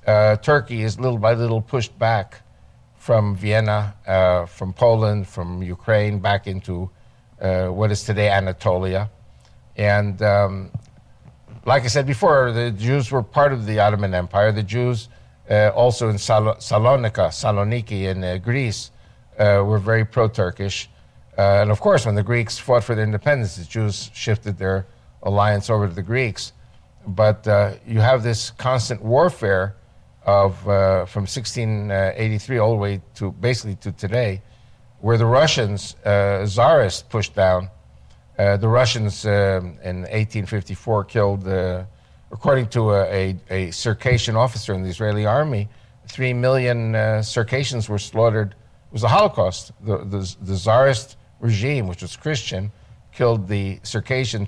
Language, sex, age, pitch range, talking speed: English, male, 60-79, 100-115 Hz, 150 wpm